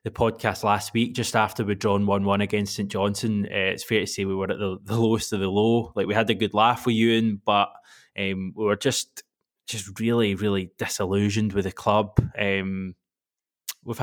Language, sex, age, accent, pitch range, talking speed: English, male, 20-39, British, 100-120 Hz, 205 wpm